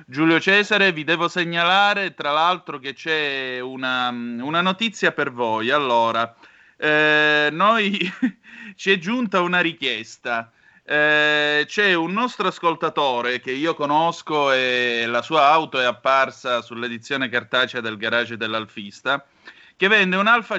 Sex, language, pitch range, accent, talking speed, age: male, Italian, 125-165 Hz, native, 130 wpm, 30-49